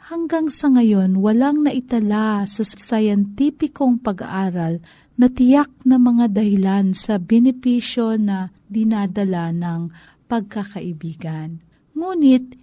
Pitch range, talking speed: 195-280 Hz, 95 wpm